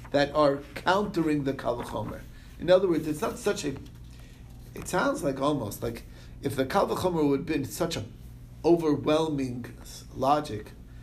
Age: 50-69